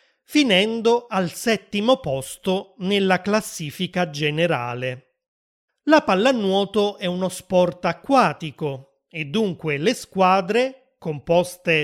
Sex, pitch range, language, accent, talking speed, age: male, 155-215 Hz, Italian, native, 90 wpm, 30-49